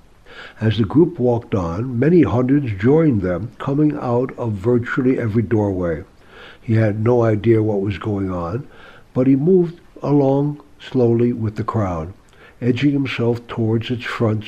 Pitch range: 110-140 Hz